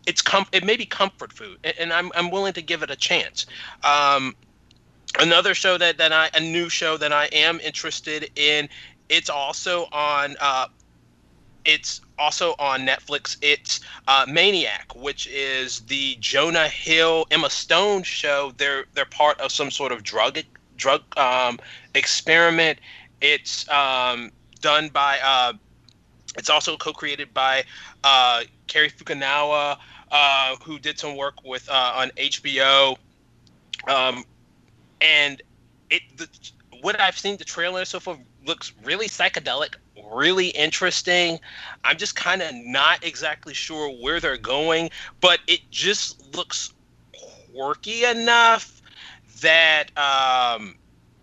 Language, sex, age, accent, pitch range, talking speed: English, male, 30-49, American, 140-175 Hz, 130 wpm